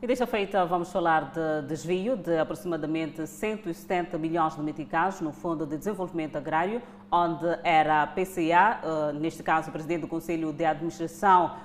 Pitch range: 165-205 Hz